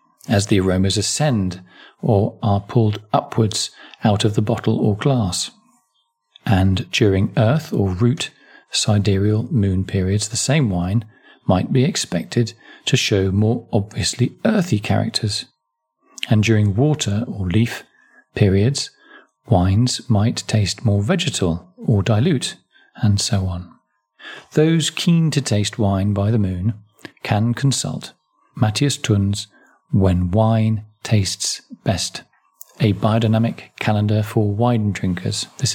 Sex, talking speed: male, 125 wpm